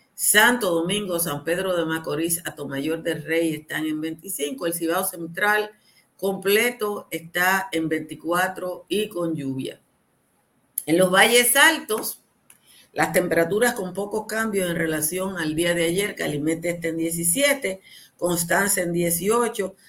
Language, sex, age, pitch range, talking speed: Spanish, female, 50-69, 160-195 Hz, 135 wpm